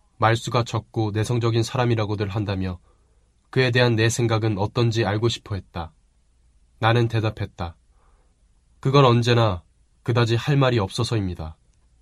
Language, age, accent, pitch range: Korean, 20-39, native, 70-115 Hz